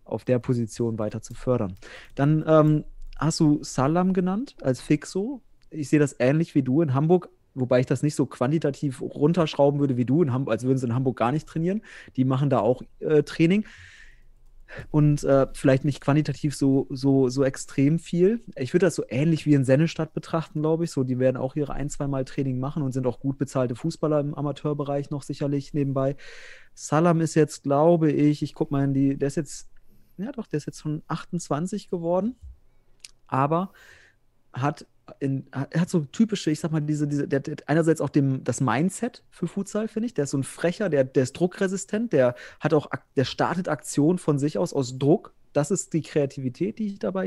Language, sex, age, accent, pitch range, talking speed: German, male, 30-49, German, 130-160 Hz, 205 wpm